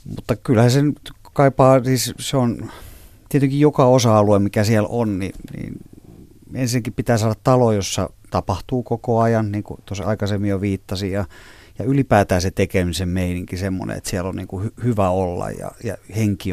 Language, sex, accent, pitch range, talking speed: Finnish, male, native, 95-110 Hz, 165 wpm